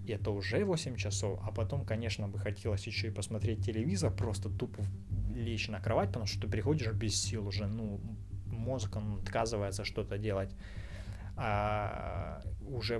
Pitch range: 100-120 Hz